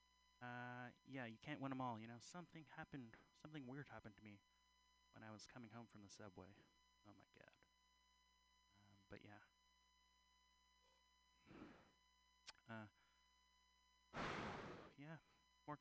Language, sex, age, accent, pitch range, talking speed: English, male, 30-49, American, 100-150 Hz, 125 wpm